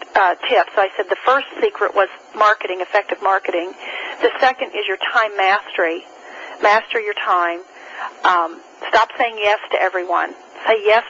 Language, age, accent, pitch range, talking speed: English, 40-59, American, 205-290 Hz, 150 wpm